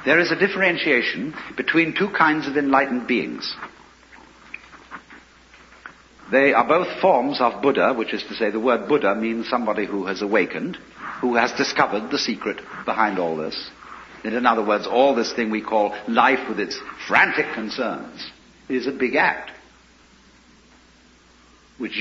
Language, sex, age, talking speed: English, male, 60-79, 145 wpm